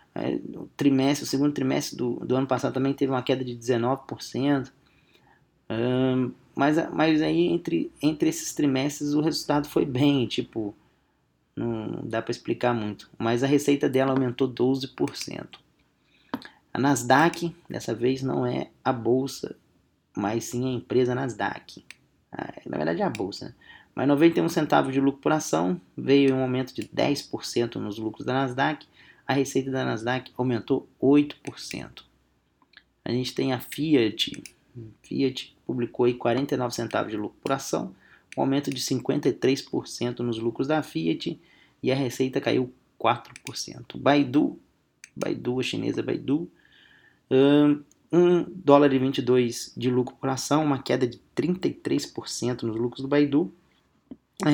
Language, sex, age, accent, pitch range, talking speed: English, male, 20-39, Brazilian, 120-145 Hz, 145 wpm